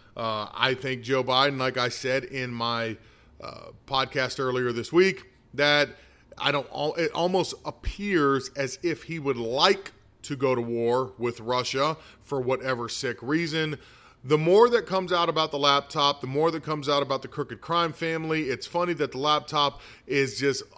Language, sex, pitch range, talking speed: English, male, 130-170 Hz, 175 wpm